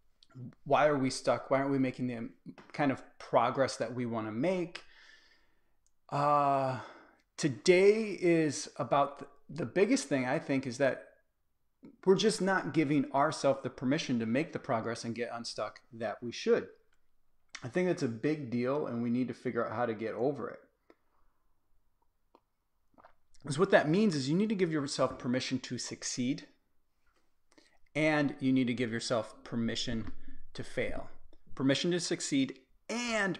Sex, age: male, 30-49